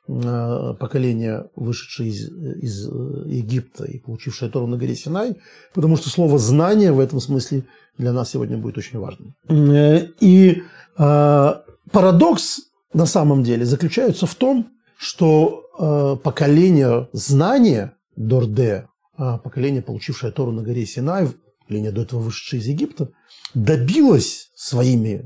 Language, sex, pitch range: Russian, male, 125-165 Hz